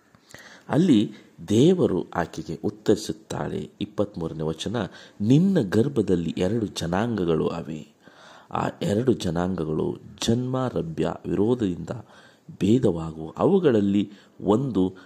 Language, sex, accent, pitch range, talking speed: Kannada, male, native, 85-115 Hz, 80 wpm